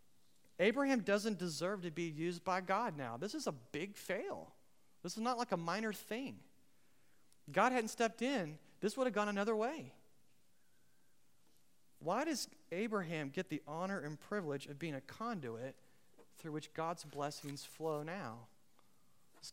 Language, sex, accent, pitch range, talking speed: English, male, American, 155-245 Hz, 155 wpm